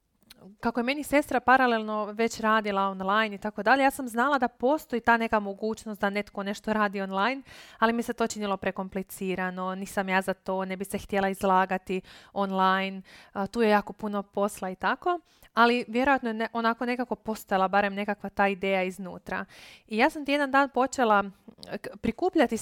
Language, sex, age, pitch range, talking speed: Croatian, female, 20-39, 200-245 Hz, 175 wpm